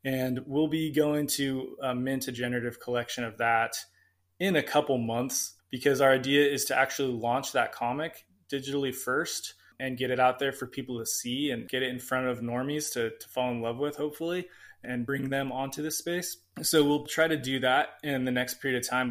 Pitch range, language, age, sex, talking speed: 115-140 Hz, English, 20-39, male, 215 wpm